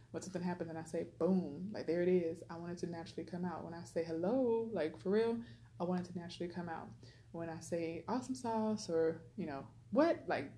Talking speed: 240 wpm